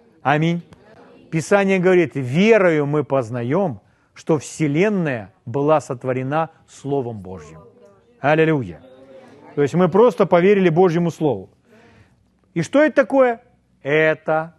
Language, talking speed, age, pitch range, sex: Russian, 105 wpm, 40-59, 140-210 Hz, male